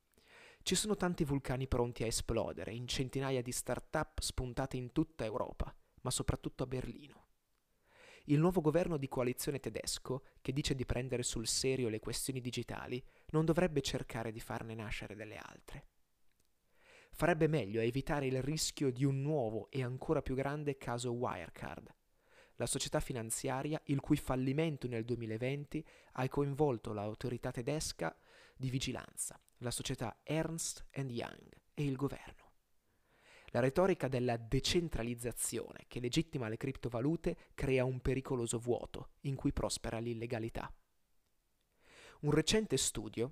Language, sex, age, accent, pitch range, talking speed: Italian, male, 30-49, native, 120-145 Hz, 135 wpm